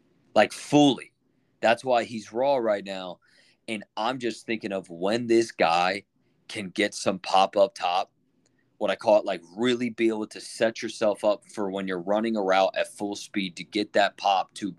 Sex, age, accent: male, 30-49, American